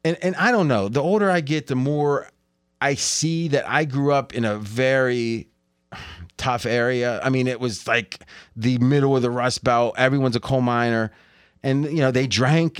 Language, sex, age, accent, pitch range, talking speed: English, male, 30-49, American, 120-165 Hz, 195 wpm